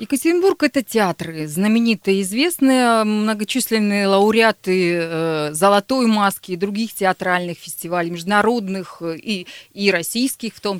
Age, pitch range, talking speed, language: 30-49, 175-225 Hz, 105 wpm, Russian